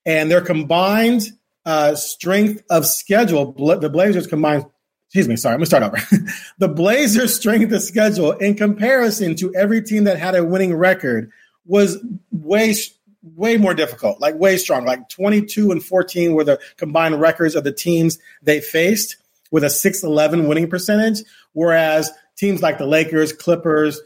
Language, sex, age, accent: English, male, 40-59, American